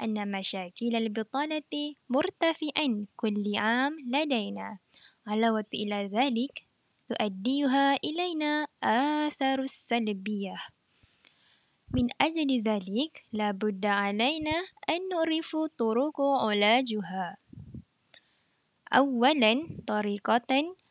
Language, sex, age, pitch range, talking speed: Malay, female, 10-29, 215-280 Hz, 75 wpm